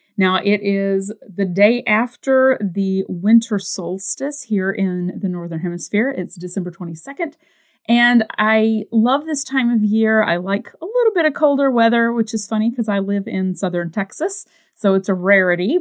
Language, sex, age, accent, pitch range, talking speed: English, female, 30-49, American, 195-245 Hz, 170 wpm